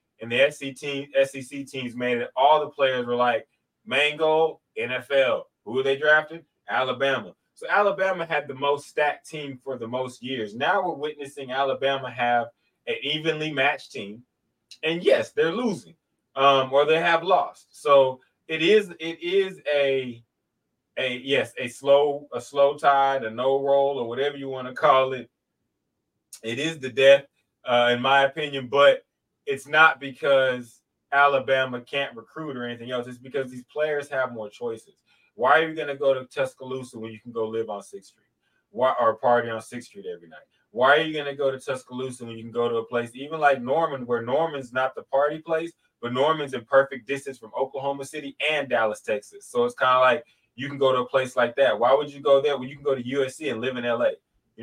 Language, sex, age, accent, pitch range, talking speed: English, male, 20-39, American, 125-145 Hz, 200 wpm